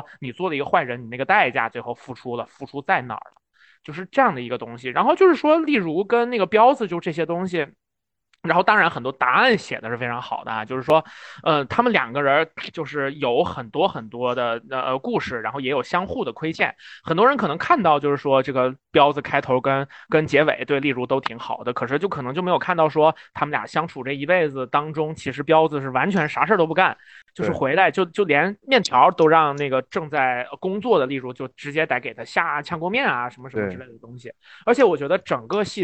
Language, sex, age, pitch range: Chinese, male, 20-39, 130-180 Hz